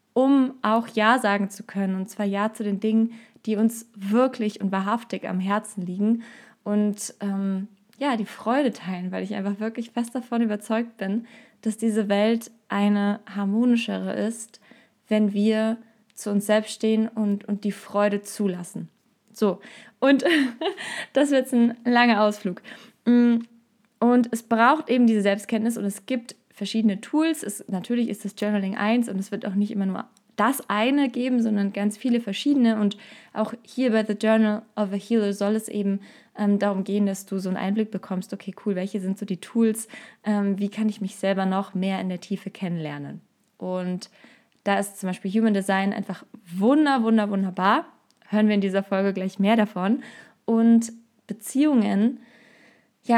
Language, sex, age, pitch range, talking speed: German, female, 20-39, 200-230 Hz, 170 wpm